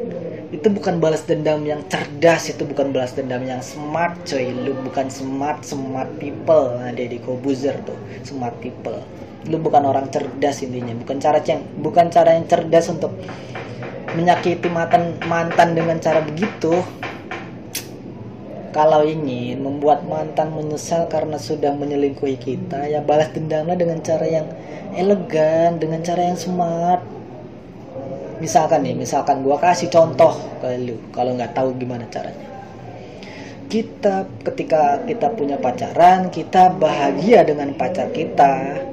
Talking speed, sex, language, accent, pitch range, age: 135 wpm, female, Indonesian, native, 140-170 Hz, 20-39